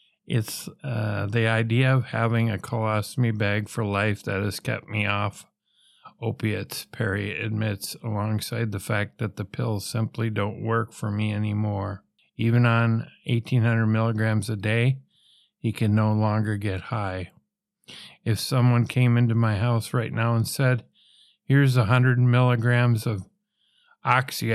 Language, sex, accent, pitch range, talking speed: English, male, American, 110-140 Hz, 140 wpm